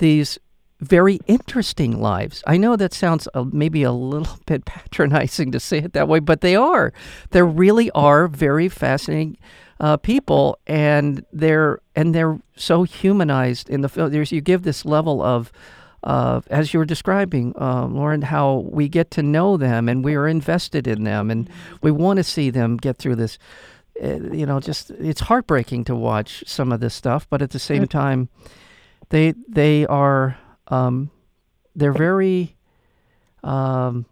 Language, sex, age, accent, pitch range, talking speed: English, male, 50-69, American, 125-160 Hz, 165 wpm